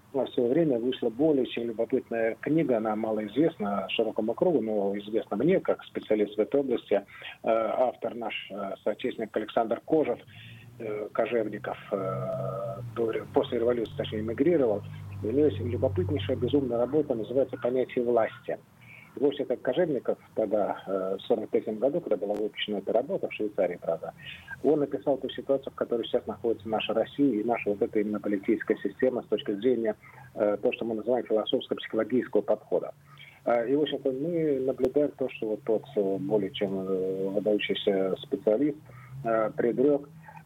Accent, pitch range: native, 105-130 Hz